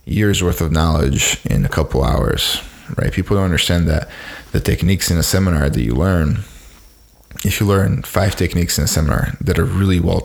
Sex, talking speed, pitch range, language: male, 195 wpm, 85-100 Hz, English